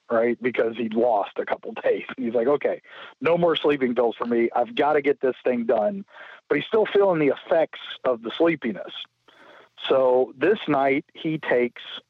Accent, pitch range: American, 105-140 Hz